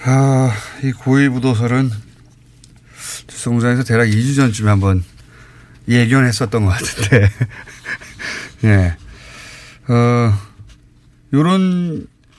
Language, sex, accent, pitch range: Korean, male, native, 115-150 Hz